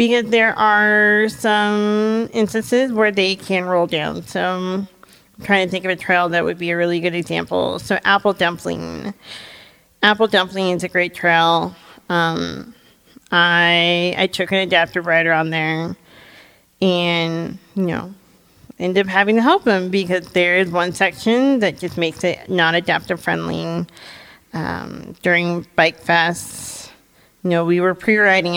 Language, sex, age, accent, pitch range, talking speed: English, female, 40-59, American, 170-195 Hz, 150 wpm